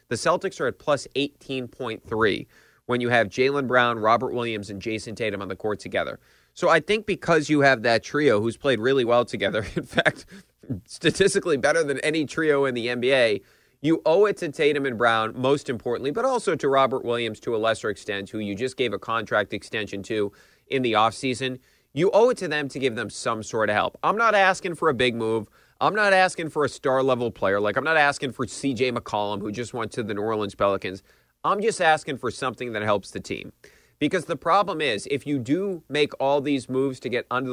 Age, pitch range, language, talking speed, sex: 30-49, 120-150 Hz, English, 215 wpm, male